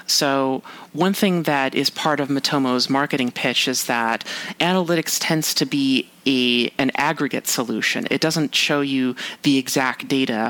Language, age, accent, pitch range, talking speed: English, 30-49, American, 130-160 Hz, 150 wpm